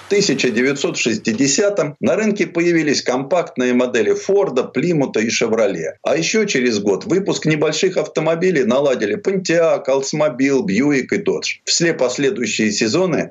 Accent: native